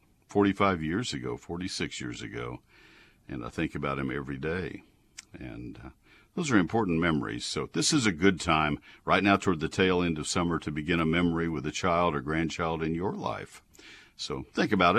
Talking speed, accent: 190 wpm, American